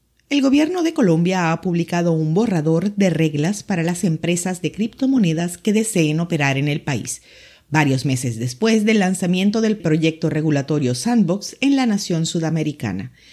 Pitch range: 150-210 Hz